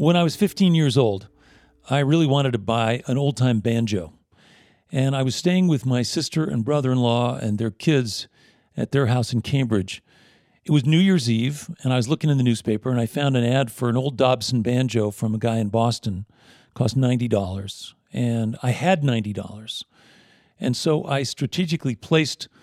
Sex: male